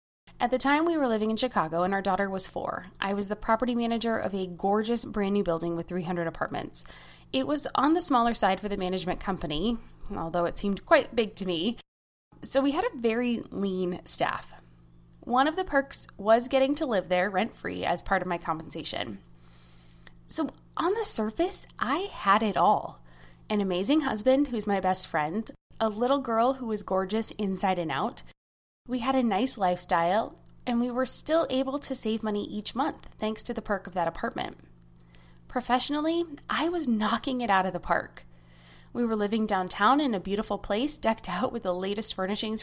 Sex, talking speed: female, 190 wpm